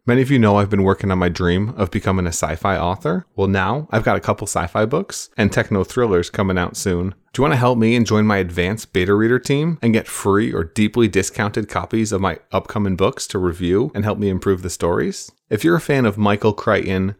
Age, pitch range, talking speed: 30-49, 95-110 Hz, 235 wpm